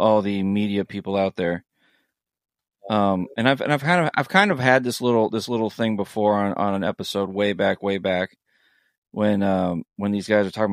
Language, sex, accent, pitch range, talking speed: English, male, American, 100-115 Hz, 215 wpm